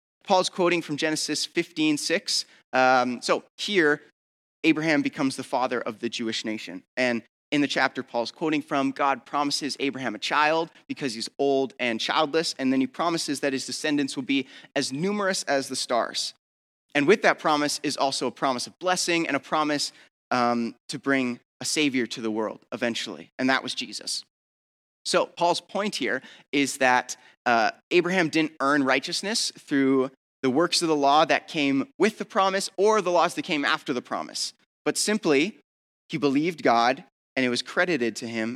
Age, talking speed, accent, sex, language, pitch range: 30-49, 180 wpm, American, male, English, 125-160 Hz